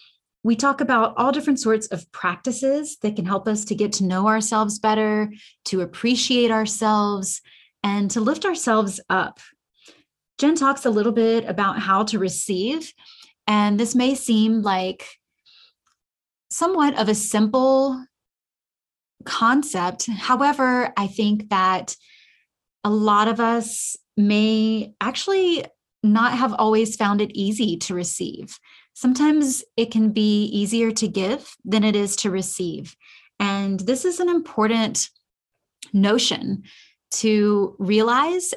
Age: 30-49